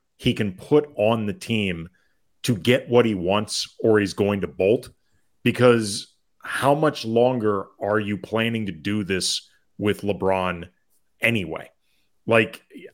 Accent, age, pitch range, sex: American, 30-49, 105-135 Hz, male